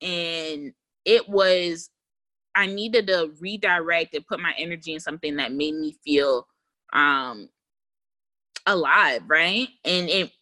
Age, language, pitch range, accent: 20-39, English, 150-195 Hz, American